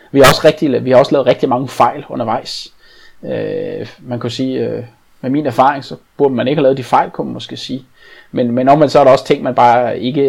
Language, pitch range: Danish, 120-140 Hz